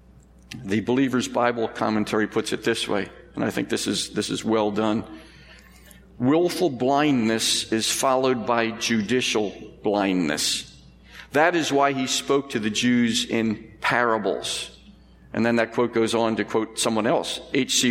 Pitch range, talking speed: 110-145 Hz, 150 wpm